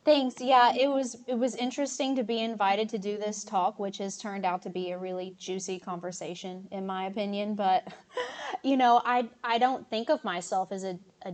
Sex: female